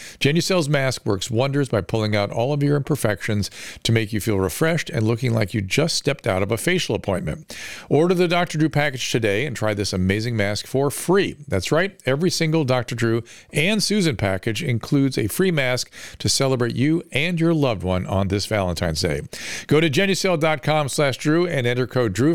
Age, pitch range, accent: 50-69, 110-155 Hz, American